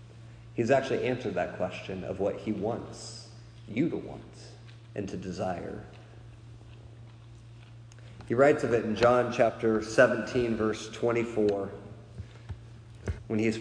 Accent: American